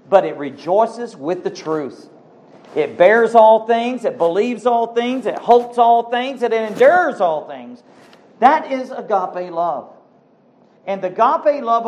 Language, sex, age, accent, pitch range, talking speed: English, male, 50-69, American, 150-225 Hz, 155 wpm